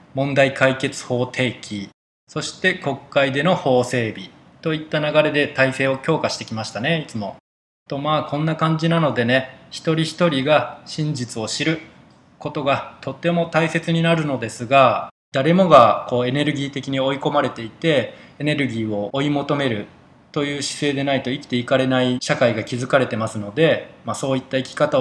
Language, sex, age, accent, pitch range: Japanese, male, 20-39, native, 125-150 Hz